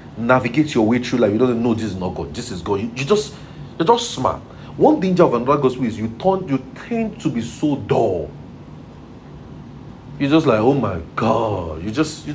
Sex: male